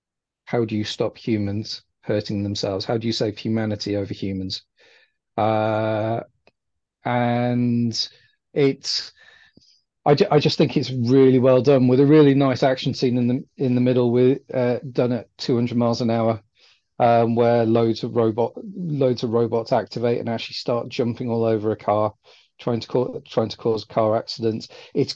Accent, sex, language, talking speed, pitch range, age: British, male, English, 170 wpm, 110-125 Hz, 40-59